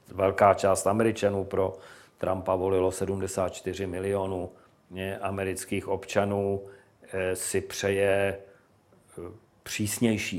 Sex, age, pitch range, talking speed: male, 40-59, 90-100 Hz, 75 wpm